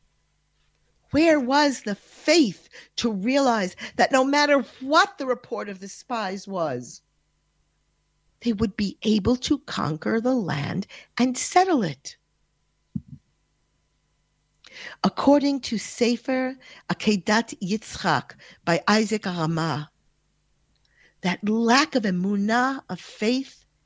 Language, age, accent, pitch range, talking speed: English, 50-69, American, 170-240 Hz, 105 wpm